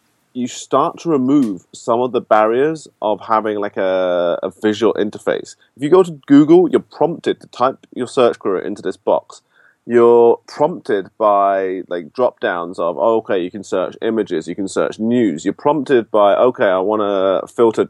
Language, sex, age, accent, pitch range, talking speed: English, male, 30-49, British, 105-150 Hz, 180 wpm